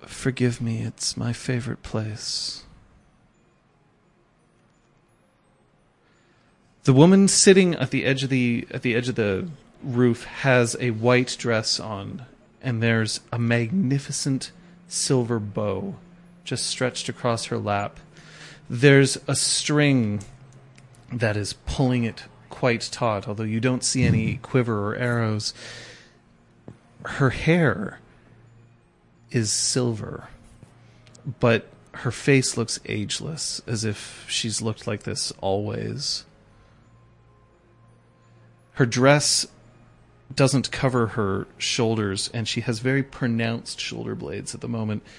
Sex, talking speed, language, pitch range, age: male, 115 wpm, English, 115-135 Hz, 30-49